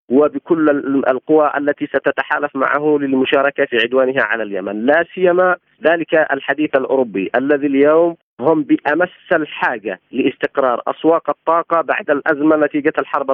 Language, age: Arabic, 40-59